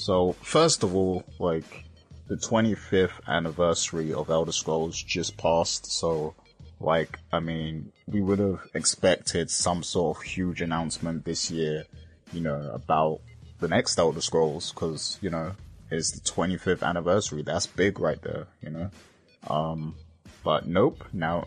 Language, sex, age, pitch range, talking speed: English, male, 20-39, 80-95 Hz, 145 wpm